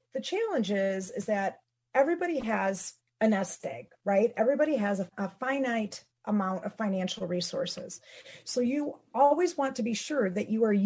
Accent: American